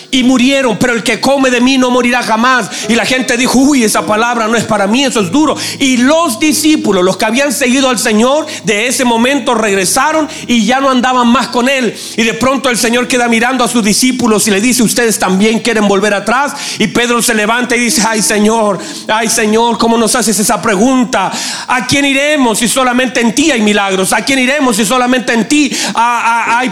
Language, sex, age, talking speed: Spanish, male, 40-59, 215 wpm